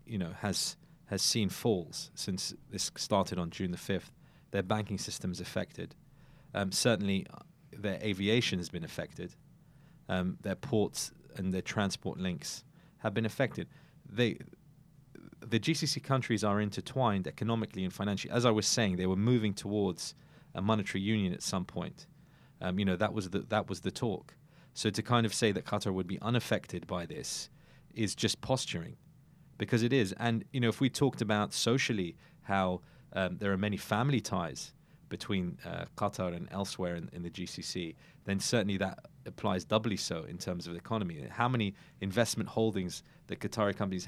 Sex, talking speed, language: male, 175 wpm, English